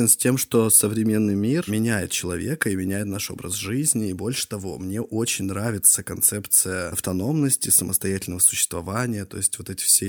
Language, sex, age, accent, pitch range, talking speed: Russian, male, 20-39, native, 95-115 Hz, 160 wpm